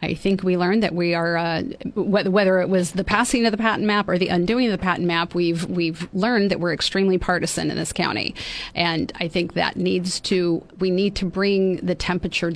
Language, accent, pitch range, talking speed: English, American, 170-200 Hz, 220 wpm